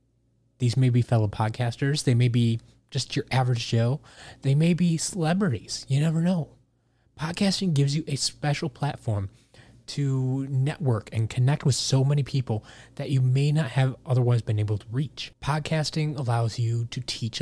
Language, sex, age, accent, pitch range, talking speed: English, male, 20-39, American, 120-150 Hz, 165 wpm